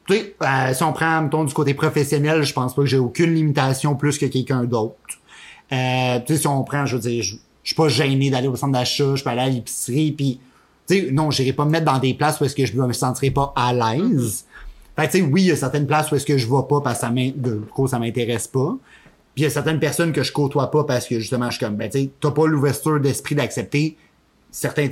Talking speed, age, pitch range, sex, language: 255 wpm, 30-49, 130-155 Hz, male, French